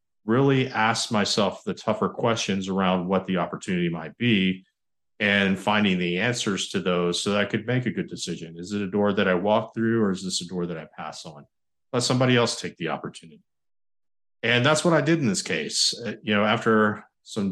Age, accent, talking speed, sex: 40-59, American, 210 wpm, male